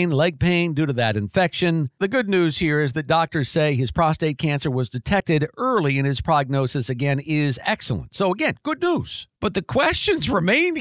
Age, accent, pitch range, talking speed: 50-69, American, 155-215 Hz, 190 wpm